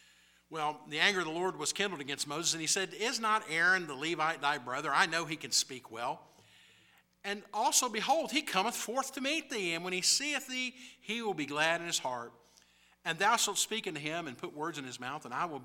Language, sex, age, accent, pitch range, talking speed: English, male, 50-69, American, 120-155 Hz, 240 wpm